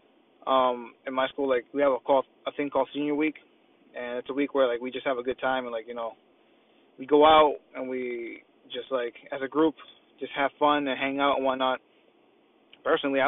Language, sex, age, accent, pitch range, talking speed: English, male, 20-39, American, 135-200 Hz, 220 wpm